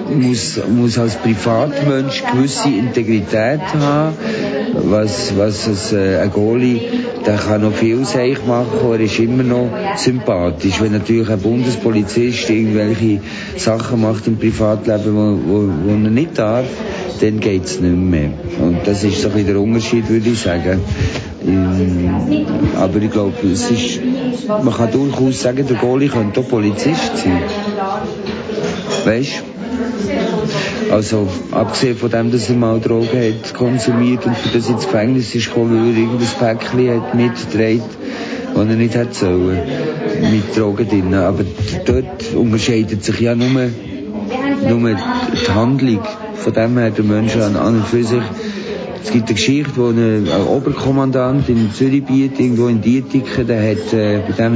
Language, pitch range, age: German, 110-125 Hz, 50-69